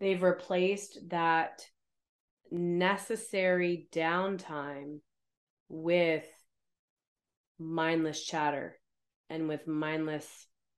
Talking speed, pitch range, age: 60 wpm, 145-170 Hz, 30-49